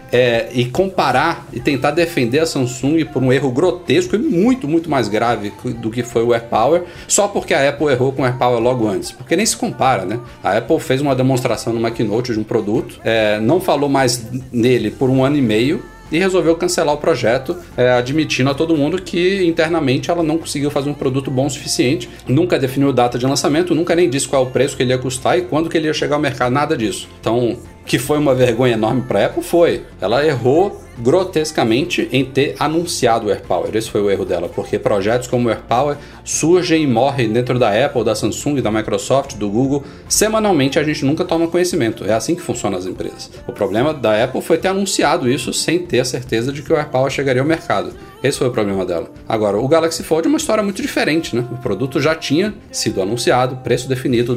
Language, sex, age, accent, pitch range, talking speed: Portuguese, male, 40-59, Brazilian, 120-160 Hz, 220 wpm